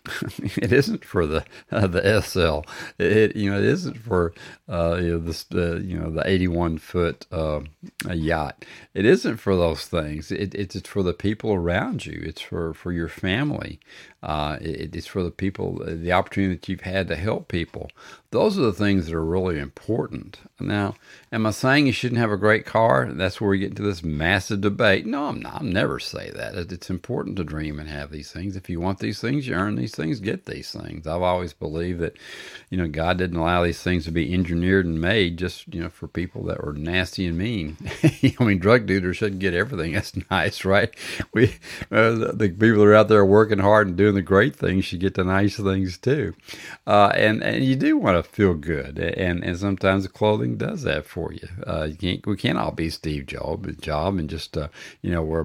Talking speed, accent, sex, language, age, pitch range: 215 wpm, American, male, English, 50-69, 85-100 Hz